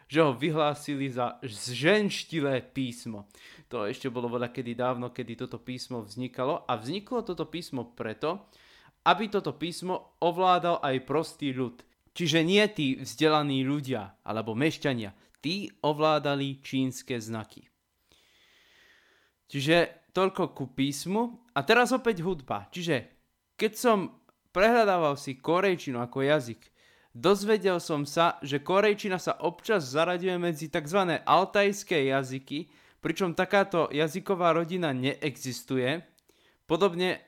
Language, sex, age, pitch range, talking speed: Slovak, male, 20-39, 135-175 Hz, 115 wpm